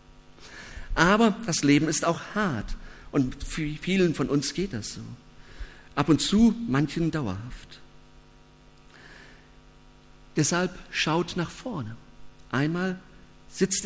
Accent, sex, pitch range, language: German, male, 125-175 Hz, German